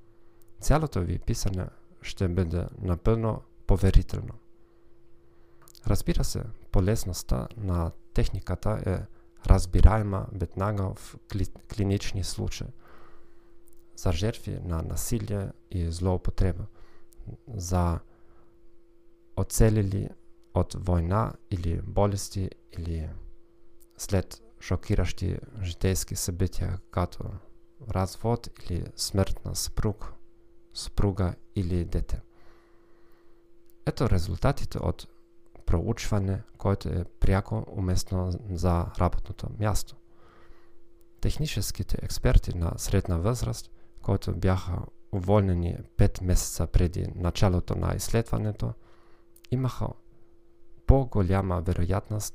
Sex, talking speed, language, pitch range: male, 85 wpm, Bulgarian, 90-115 Hz